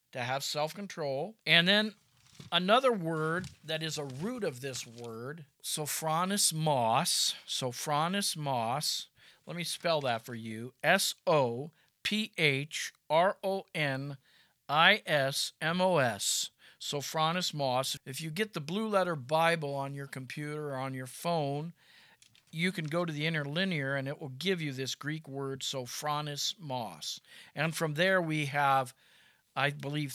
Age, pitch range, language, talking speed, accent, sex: 50-69, 140-175 Hz, English, 150 wpm, American, male